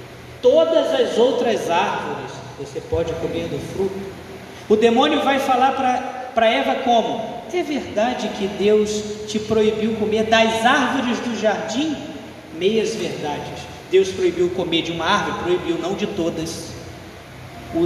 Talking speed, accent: 135 wpm, Brazilian